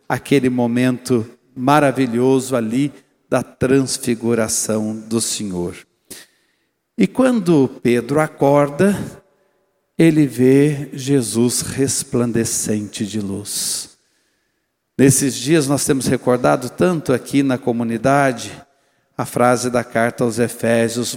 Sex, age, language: male, 60-79, Portuguese